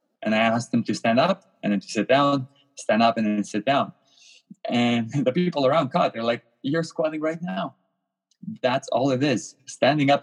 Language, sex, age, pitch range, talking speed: English, male, 20-39, 115-145 Hz, 205 wpm